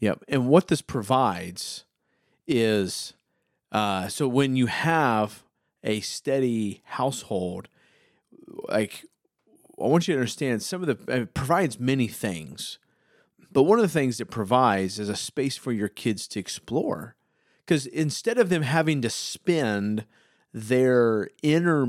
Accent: American